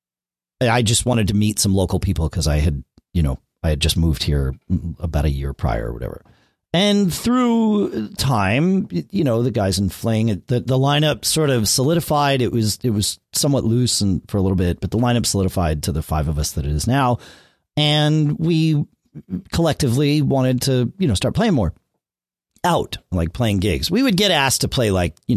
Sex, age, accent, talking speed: male, 40-59, American, 200 wpm